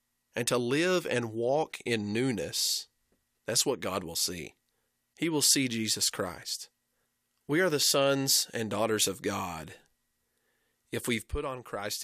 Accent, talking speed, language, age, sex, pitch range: American, 150 wpm, English, 40-59, male, 105-135 Hz